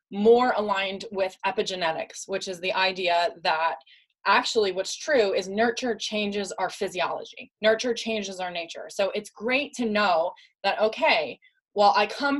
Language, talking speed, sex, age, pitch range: English, 150 wpm, female, 20-39, 195-240 Hz